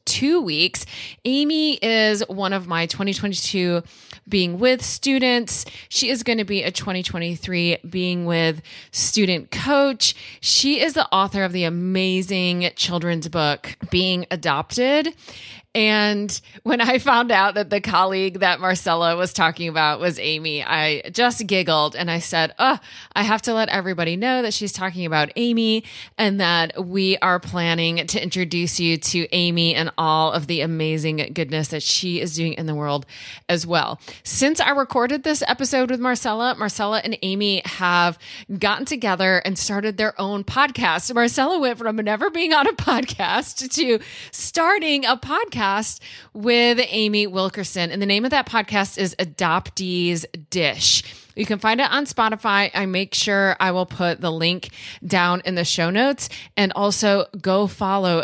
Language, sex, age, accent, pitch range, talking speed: English, female, 20-39, American, 170-225 Hz, 160 wpm